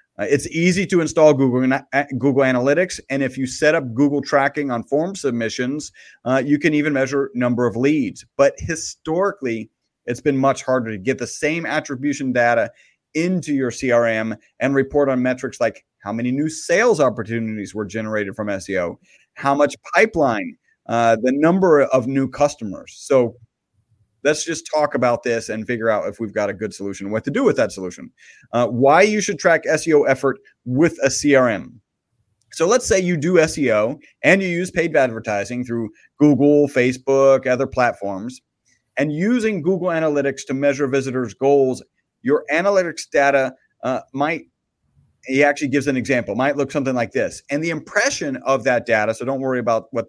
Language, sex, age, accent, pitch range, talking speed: English, male, 30-49, American, 120-150 Hz, 170 wpm